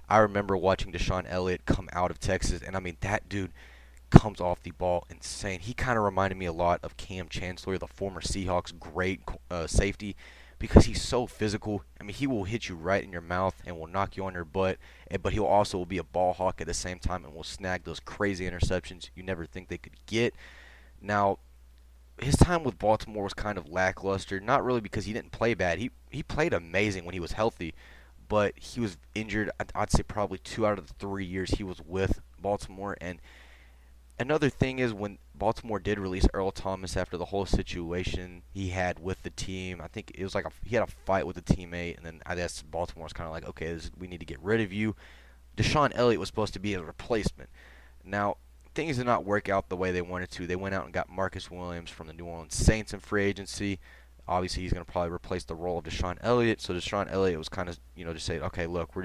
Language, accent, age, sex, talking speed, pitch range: English, American, 20-39, male, 230 wpm, 85-100 Hz